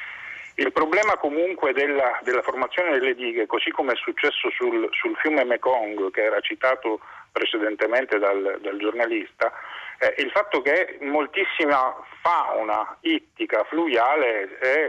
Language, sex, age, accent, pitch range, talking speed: Italian, male, 40-59, native, 320-405 Hz, 135 wpm